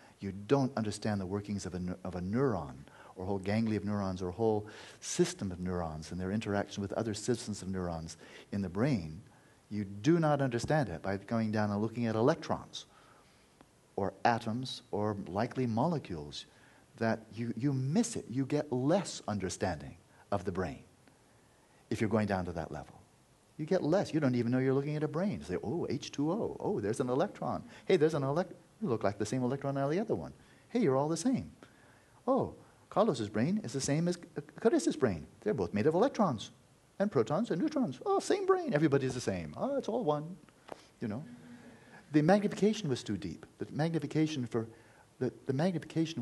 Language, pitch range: English, 100-145 Hz